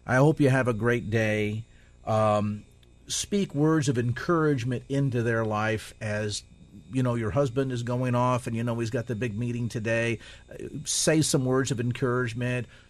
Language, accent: English, American